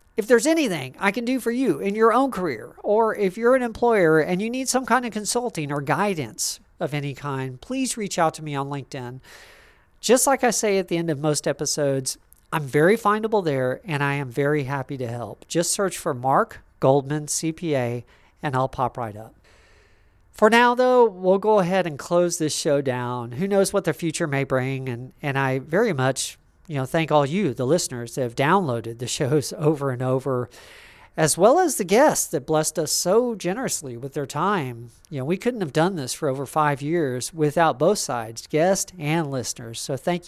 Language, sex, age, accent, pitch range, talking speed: English, male, 40-59, American, 130-180 Hz, 205 wpm